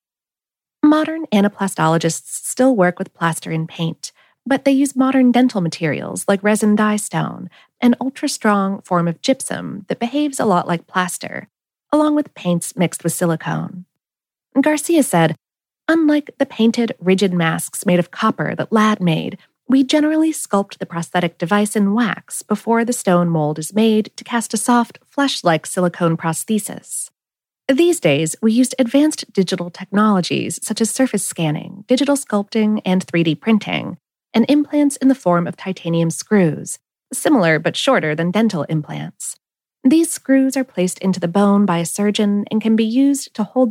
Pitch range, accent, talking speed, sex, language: 175-255 Hz, American, 160 wpm, female, English